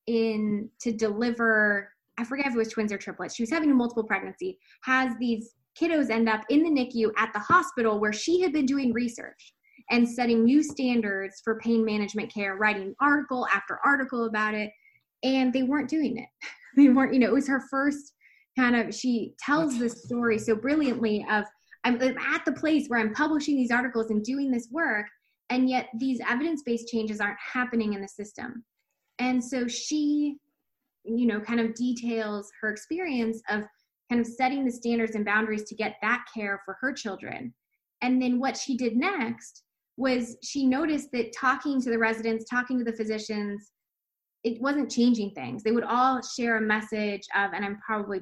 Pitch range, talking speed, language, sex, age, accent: 215-265 Hz, 185 wpm, English, female, 10-29, American